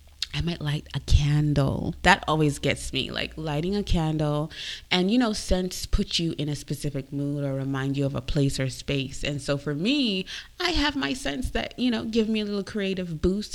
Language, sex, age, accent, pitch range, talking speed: English, female, 20-39, American, 145-180 Hz, 215 wpm